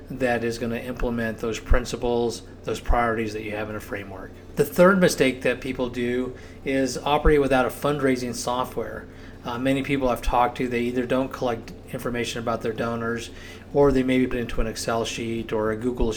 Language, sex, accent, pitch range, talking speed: English, male, American, 110-130 Hz, 195 wpm